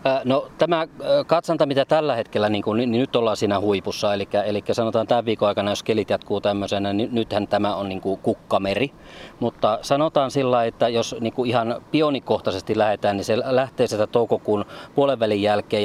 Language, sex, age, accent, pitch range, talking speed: Finnish, male, 40-59, native, 105-140 Hz, 180 wpm